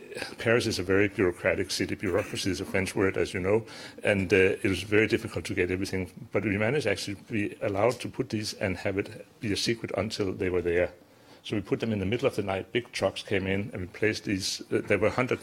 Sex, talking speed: male, 255 wpm